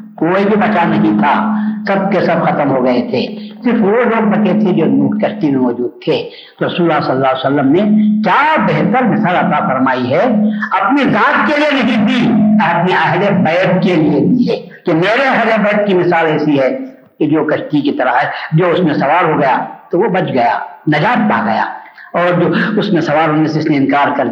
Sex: female